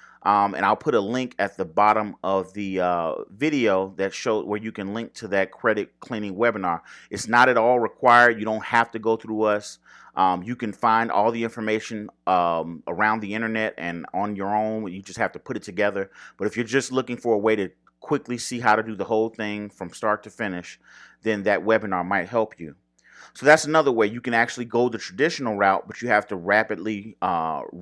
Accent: American